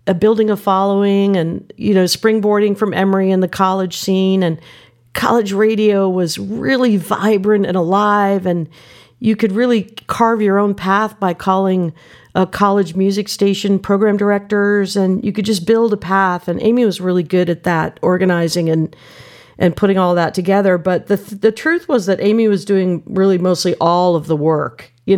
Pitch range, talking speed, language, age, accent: 170-210 Hz, 175 wpm, English, 50-69, American